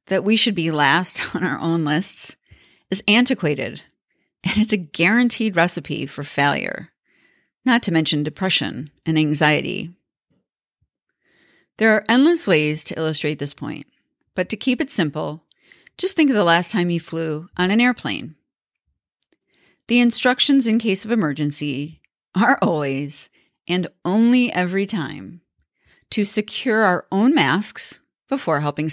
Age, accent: 40-59, American